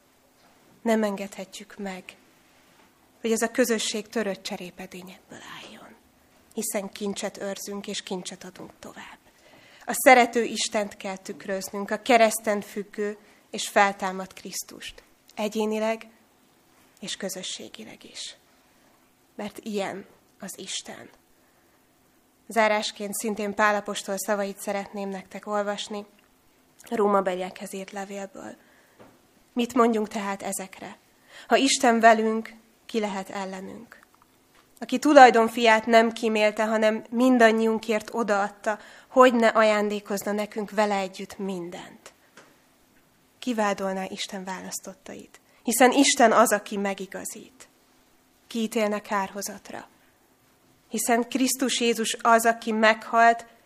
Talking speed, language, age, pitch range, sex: 95 wpm, Hungarian, 20-39, 200-230 Hz, female